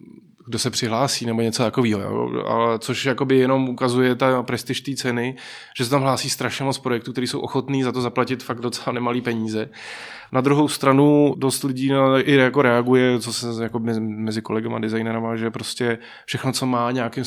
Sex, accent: male, native